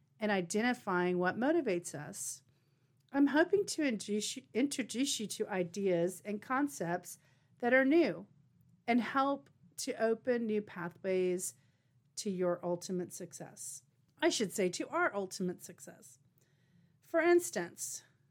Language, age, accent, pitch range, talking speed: English, 40-59, American, 175-235 Hz, 120 wpm